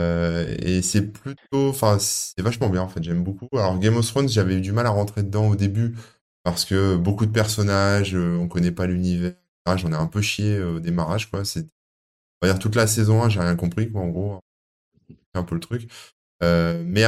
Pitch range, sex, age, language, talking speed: 90-110 Hz, male, 20-39, French, 220 wpm